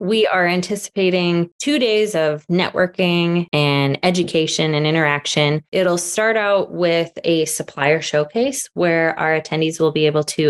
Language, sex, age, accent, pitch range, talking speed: English, female, 20-39, American, 160-190 Hz, 145 wpm